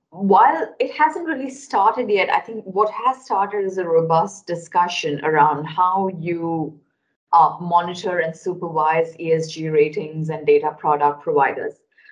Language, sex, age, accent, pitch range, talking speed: English, female, 30-49, Indian, 160-260 Hz, 140 wpm